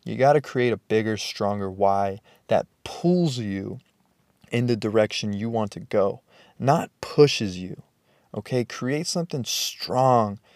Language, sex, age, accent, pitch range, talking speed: English, male, 20-39, American, 100-125 Hz, 140 wpm